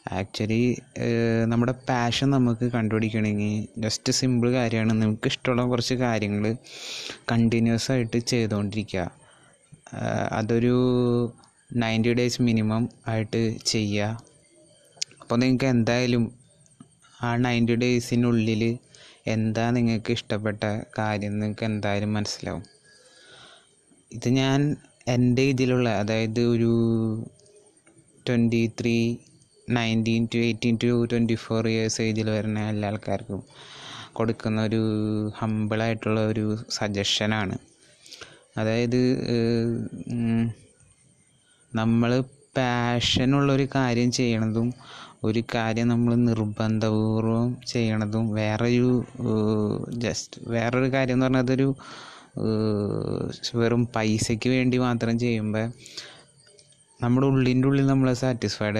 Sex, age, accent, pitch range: male, 20-39, native, 110-125 Hz